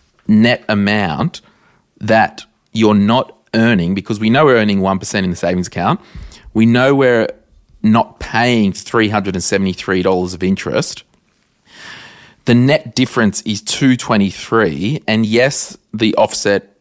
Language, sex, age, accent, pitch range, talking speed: English, male, 20-39, Australian, 95-125 Hz, 120 wpm